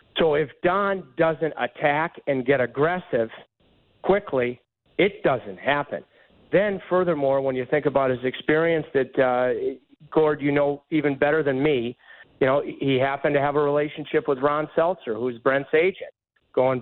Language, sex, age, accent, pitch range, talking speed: English, male, 50-69, American, 130-165 Hz, 155 wpm